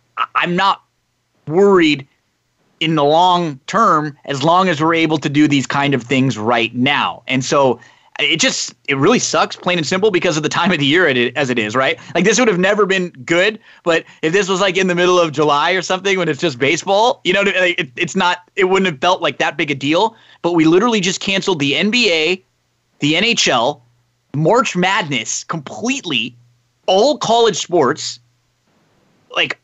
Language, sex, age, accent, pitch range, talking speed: English, male, 30-49, American, 130-185 Hz, 190 wpm